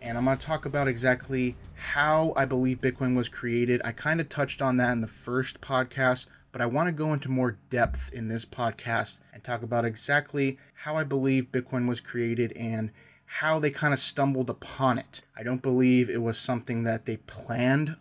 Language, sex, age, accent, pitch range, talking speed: English, male, 20-39, American, 115-130 Hz, 205 wpm